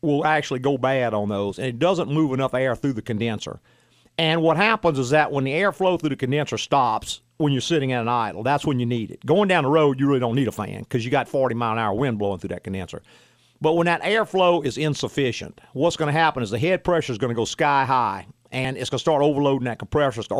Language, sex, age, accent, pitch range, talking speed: English, male, 50-69, American, 120-155 Hz, 255 wpm